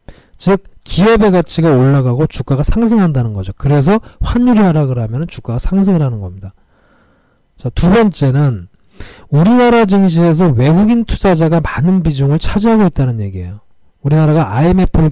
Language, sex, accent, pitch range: Korean, male, native, 110-180 Hz